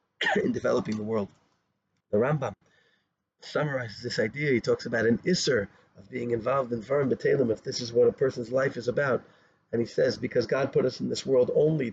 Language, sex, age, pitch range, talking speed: English, male, 40-59, 120-165 Hz, 200 wpm